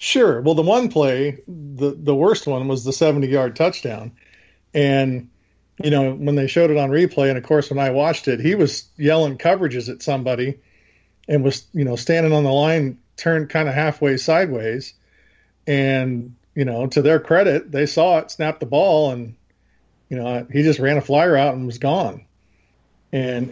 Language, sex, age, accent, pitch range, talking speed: English, male, 40-59, American, 130-155 Hz, 185 wpm